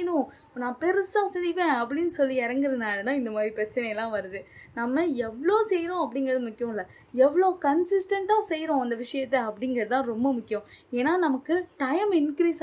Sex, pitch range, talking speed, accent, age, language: female, 255-360 Hz, 85 wpm, native, 20-39, Tamil